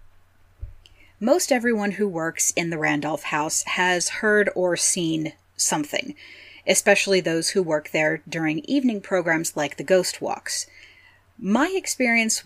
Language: English